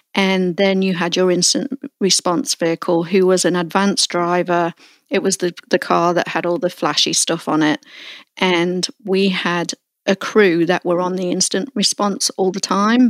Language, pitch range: English, 180-210 Hz